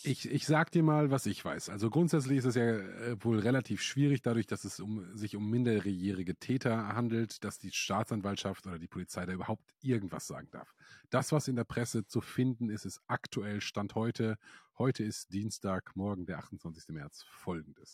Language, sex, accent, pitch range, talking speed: German, male, German, 95-125 Hz, 185 wpm